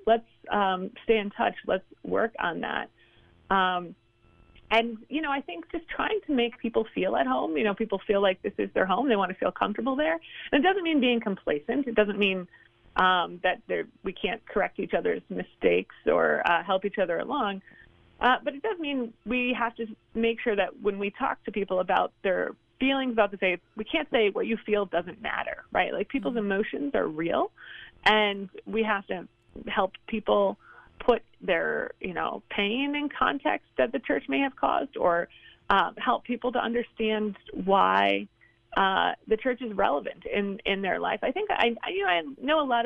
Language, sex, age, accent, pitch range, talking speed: English, female, 30-49, American, 195-255 Hz, 200 wpm